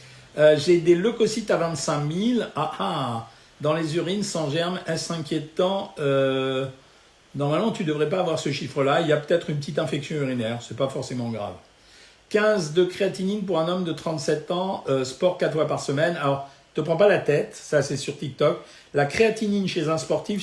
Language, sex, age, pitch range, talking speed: French, male, 50-69, 140-185 Hz, 205 wpm